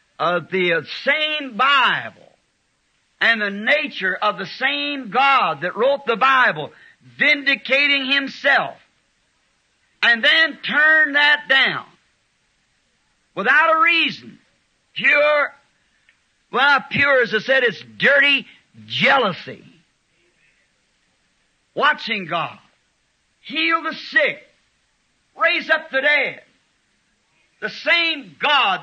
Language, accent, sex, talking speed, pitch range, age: English, American, male, 95 wpm, 230-295 Hz, 60-79